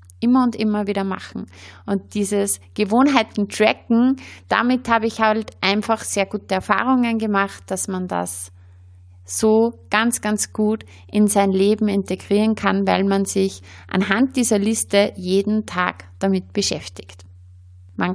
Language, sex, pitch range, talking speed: German, female, 180-230 Hz, 130 wpm